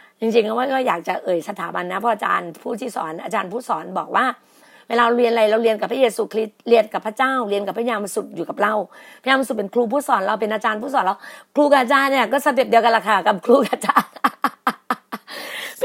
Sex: female